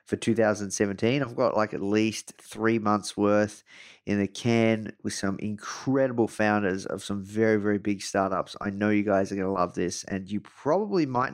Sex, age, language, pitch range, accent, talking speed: male, 30-49, English, 105-130 Hz, Australian, 190 wpm